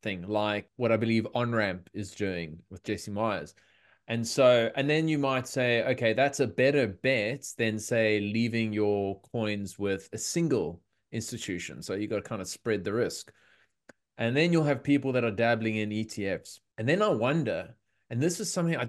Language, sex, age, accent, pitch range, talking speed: English, male, 20-39, Australian, 110-140 Hz, 195 wpm